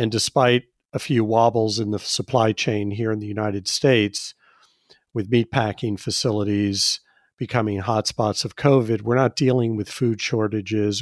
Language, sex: English, male